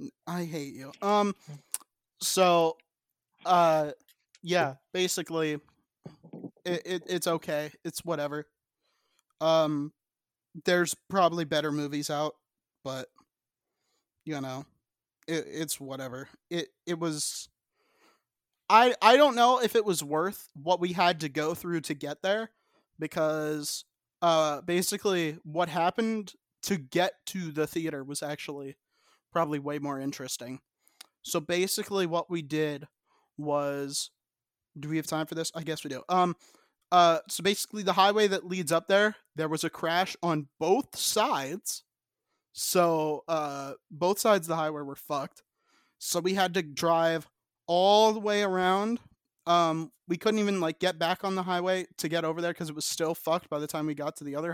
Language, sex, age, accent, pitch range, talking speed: English, male, 20-39, American, 150-180 Hz, 155 wpm